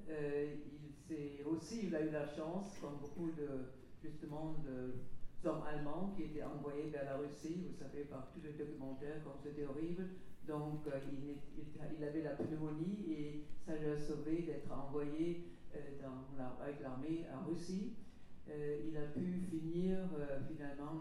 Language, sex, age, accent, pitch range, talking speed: French, female, 60-79, French, 145-165 Hz, 170 wpm